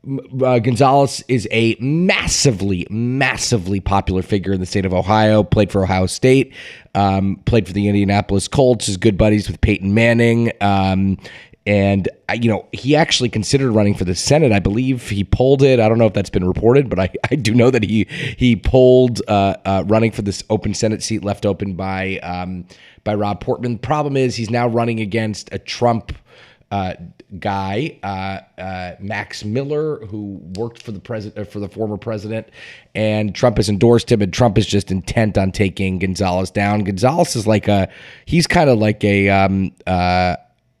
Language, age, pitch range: English, 30-49, 100-130 Hz